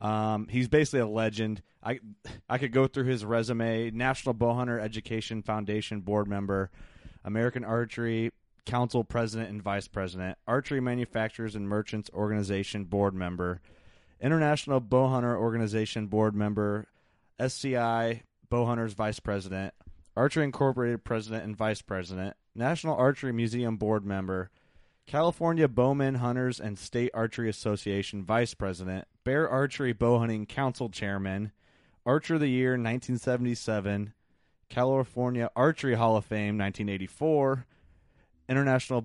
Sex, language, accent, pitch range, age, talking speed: male, English, American, 100-125 Hz, 20-39, 120 wpm